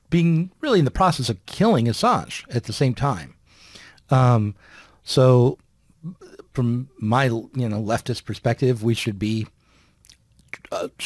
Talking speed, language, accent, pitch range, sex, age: 130 wpm, English, American, 115-145 Hz, male, 40-59